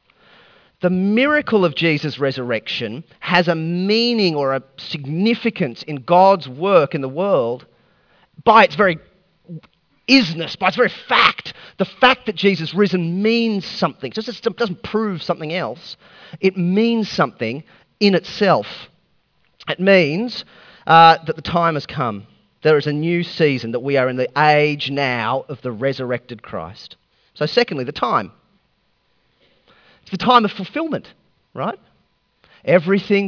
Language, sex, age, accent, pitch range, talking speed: English, male, 30-49, Australian, 155-215 Hz, 135 wpm